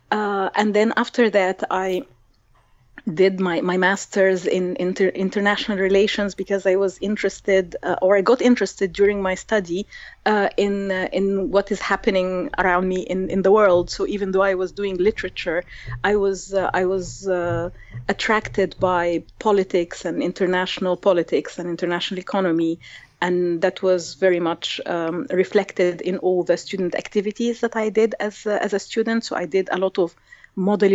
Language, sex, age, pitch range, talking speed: English, female, 30-49, 180-200 Hz, 170 wpm